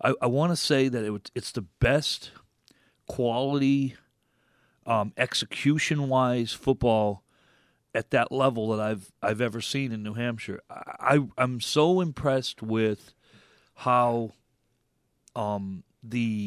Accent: American